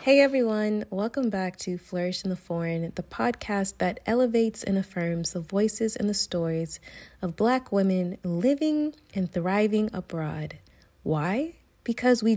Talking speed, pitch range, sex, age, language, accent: 145 wpm, 175-215 Hz, female, 20-39, English, American